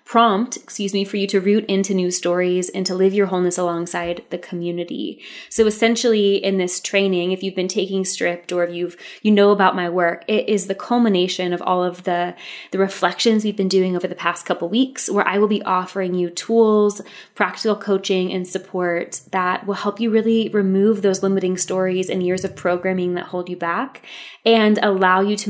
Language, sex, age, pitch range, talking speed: English, female, 20-39, 185-215 Hz, 205 wpm